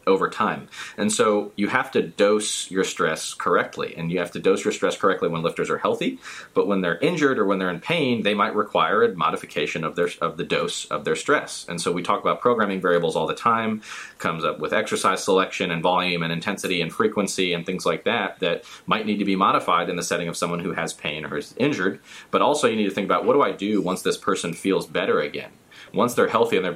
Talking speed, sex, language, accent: 245 wpm, male, English, American